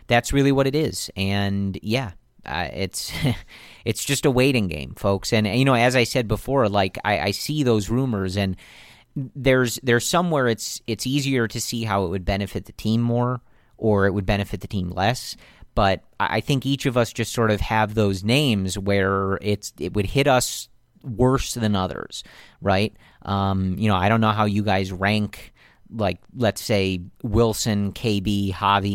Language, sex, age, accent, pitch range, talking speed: English, male, 40-59, American, 100-120 Hz, 185 wpm